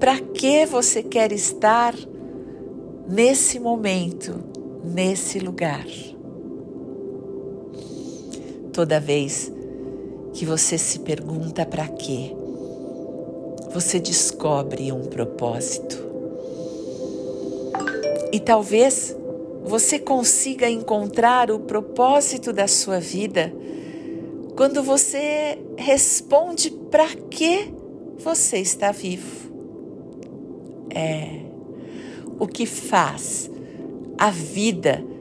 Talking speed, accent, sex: 75 wpm, Brazilian, female